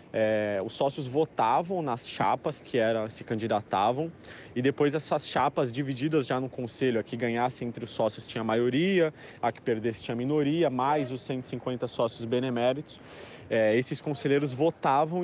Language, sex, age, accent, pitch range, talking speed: Portuguese, male, 20-39, Brazilian, 120-155 Hz, 165 wpm